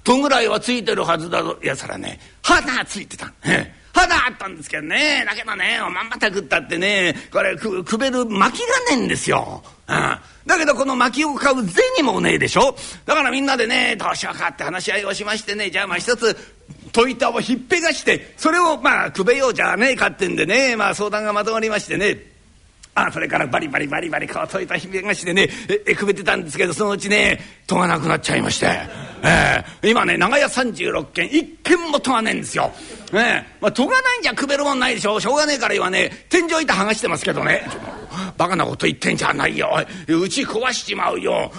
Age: 50-69